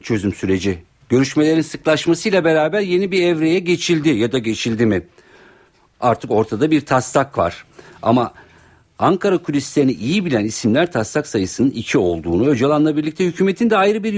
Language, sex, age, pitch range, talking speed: Turkish, male, 50-69, 110-165 Hz, 145 wpm